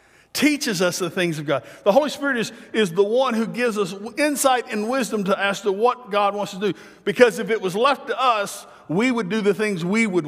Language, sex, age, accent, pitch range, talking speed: English, male, 50-69, American, 165-210 Hz, 240 wpm